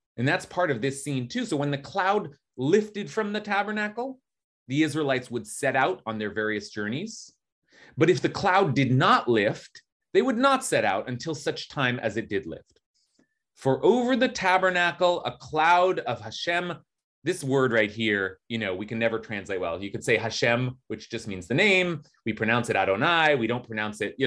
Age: 30-49